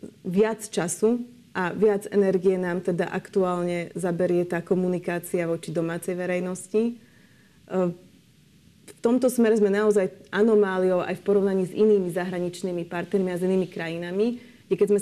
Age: 30-49